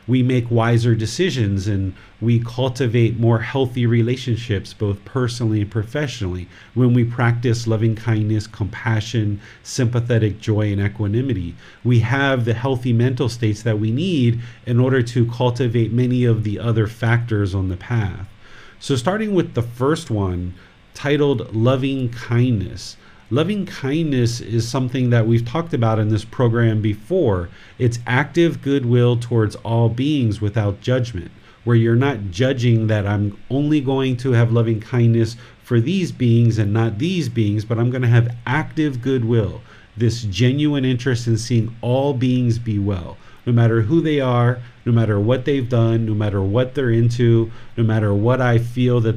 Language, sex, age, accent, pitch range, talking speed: English, male, 40-59, American, 110-125 Hz, 160 wpm